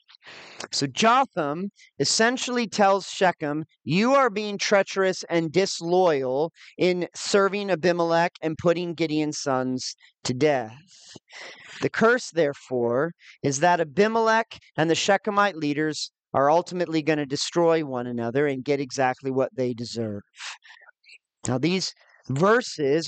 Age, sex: 40-59, male